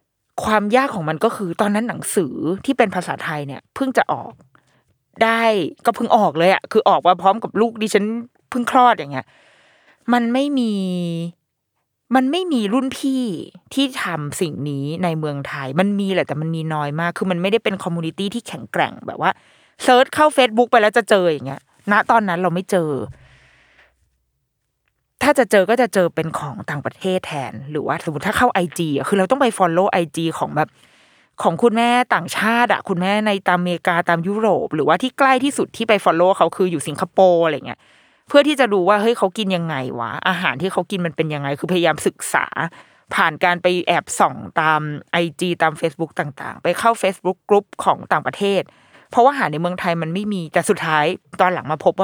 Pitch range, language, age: 160-225 Hz, Thai, 20-39